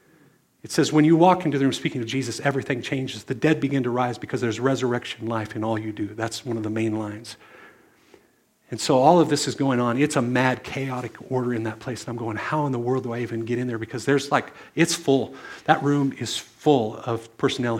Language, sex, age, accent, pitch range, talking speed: English, male, 50-69, American, 120-145 Hz, 245 wpm